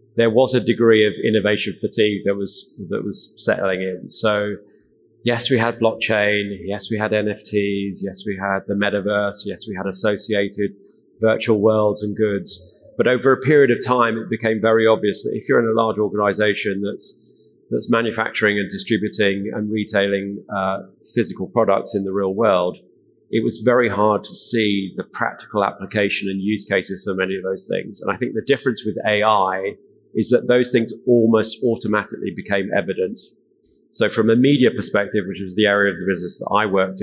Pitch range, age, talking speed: 100-115 Hz, 30-49, 185 wpm